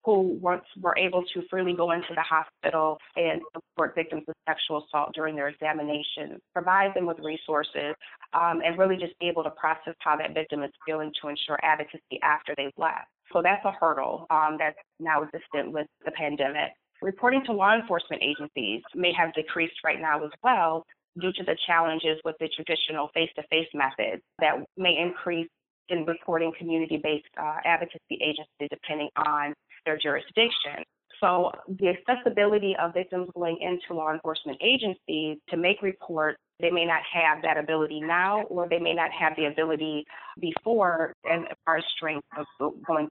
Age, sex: 20-39, female